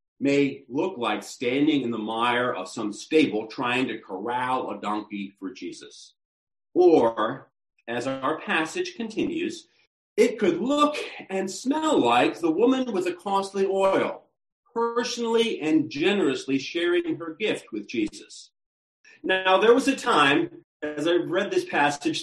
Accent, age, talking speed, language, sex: American, 40-59, 140 wpm, English, male